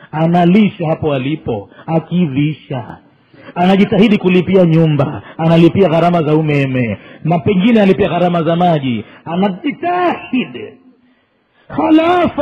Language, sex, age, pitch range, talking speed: Swahili, male, 40-59, 175-235 Hz, 90 wpm